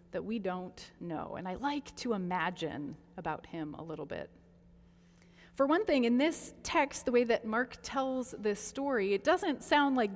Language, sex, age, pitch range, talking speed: English, female, 30-49, 160-245 Hz, 185 wpm